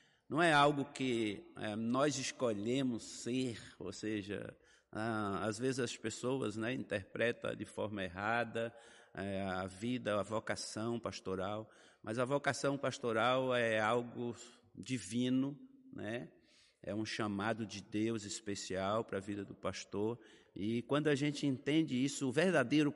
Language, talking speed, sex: Portuguese, 140 wpm, male